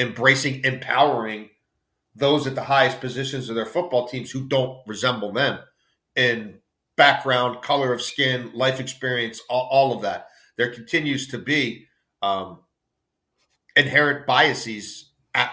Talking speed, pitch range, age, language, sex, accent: 130 wpm, 120-140 Hz, 40-59, English, male, American